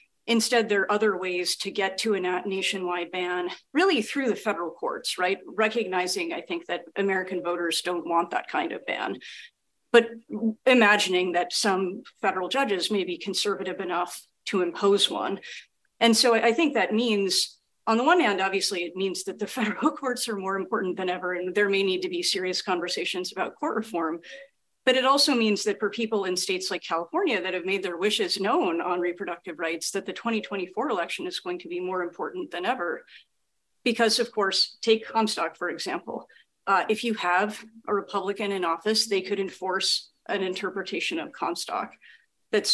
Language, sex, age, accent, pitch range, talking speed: English, female, 40-59, American, 185-225 Hz, 185 wpm